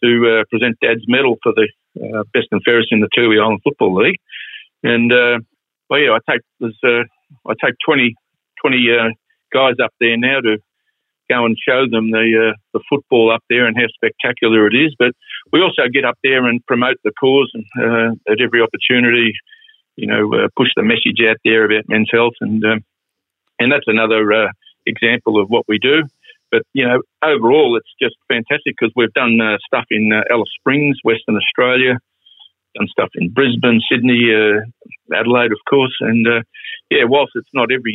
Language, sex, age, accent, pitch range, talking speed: English, male, 50-69, Australian, 110-125 Hz, 190 wpm